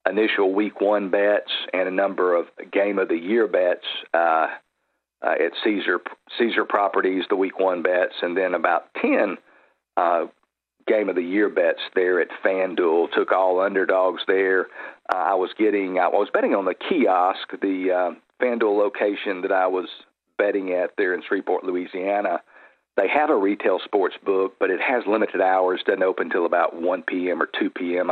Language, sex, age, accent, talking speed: English, male, 50-69, American, 175 wpm